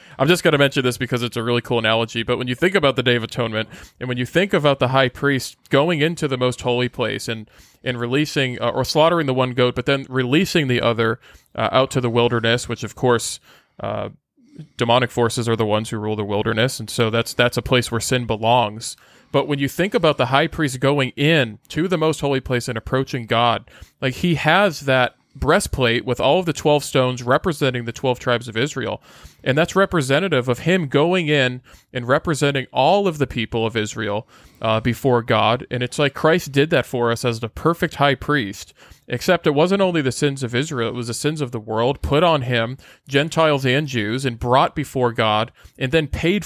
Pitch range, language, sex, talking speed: 120-145 Hz, English, male, 220 wpm